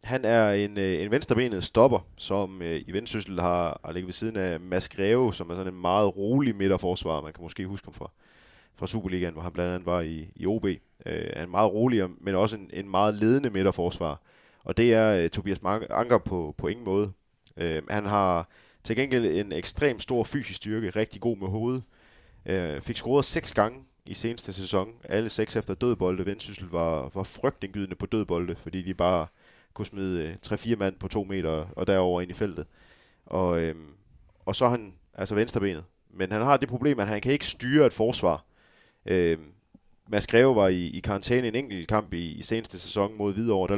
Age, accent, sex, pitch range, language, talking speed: 20-39, native, male, 90-110 Hz, Danish, 200 wpm